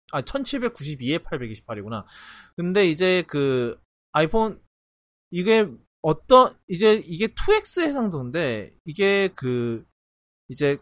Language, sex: English, male